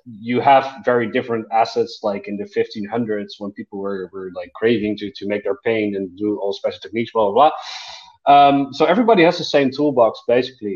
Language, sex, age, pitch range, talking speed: English, male, 20-39, 105-135 Hz, 200 wpm